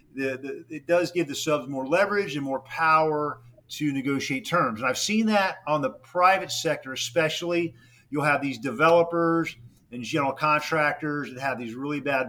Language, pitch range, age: English, 125-155 Hz, 40-59